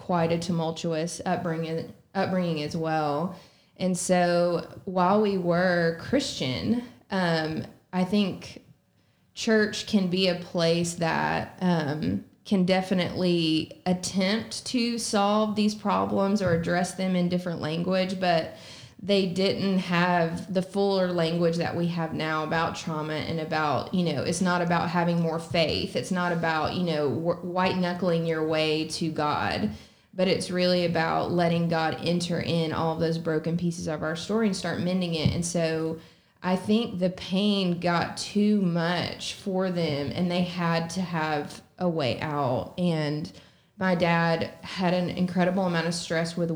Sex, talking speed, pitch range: female, 150 wpm, 165-185 Hz